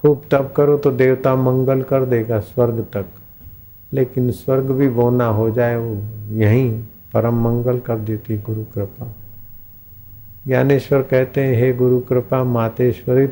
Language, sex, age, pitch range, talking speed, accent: Hindi, male, 50-69, 105-135 Hz, 130 wpm, native